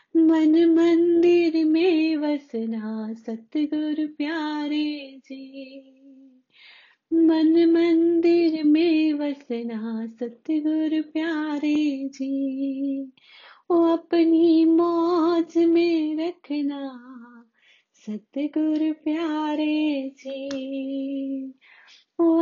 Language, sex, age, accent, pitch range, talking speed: Hindi, female, 30-49, native, 270-315 Hz, 60 wpm